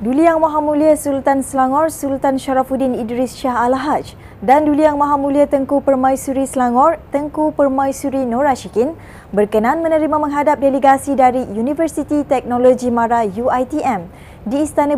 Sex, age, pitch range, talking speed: female, 20-39, 240-290 Hz, 135 wpm